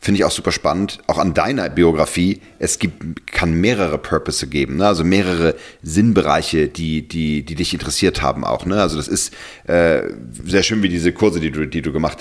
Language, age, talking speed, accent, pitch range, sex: English, 40-59, 200 wpm, German, 80-100 Hz, male